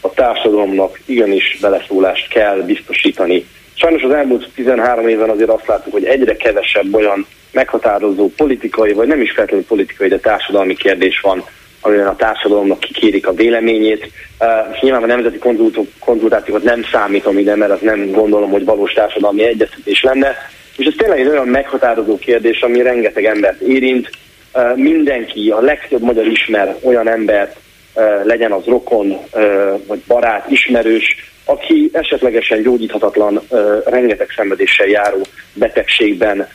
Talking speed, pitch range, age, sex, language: 140 wpm, 105-130 Hz, 30-49, male, Hungarian